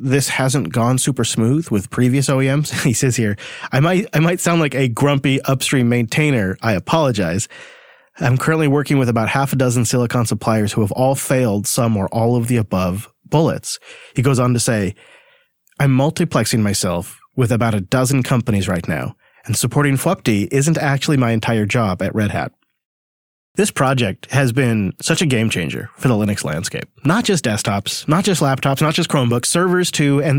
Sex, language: male, English